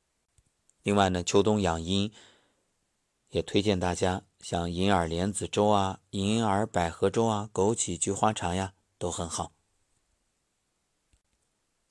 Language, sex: Chinese, male